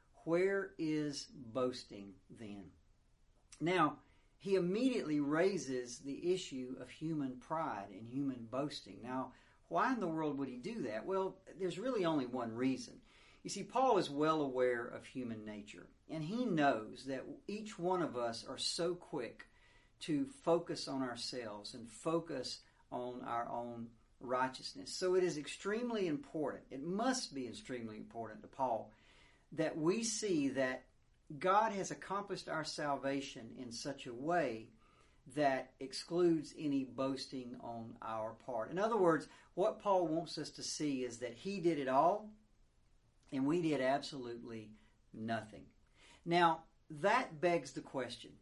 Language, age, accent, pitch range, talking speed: English, 50-69, American, 125-170 Hz, 145 wpm